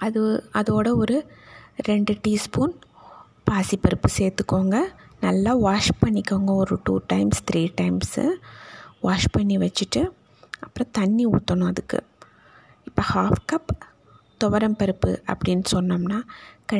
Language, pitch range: Tamil, 195-240 Hz